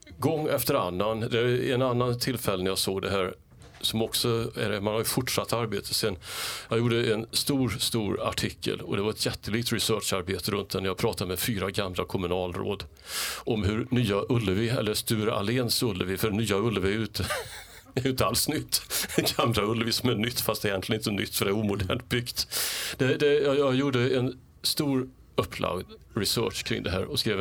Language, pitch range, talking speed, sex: English, 100-125 Hz, 190 wpm, male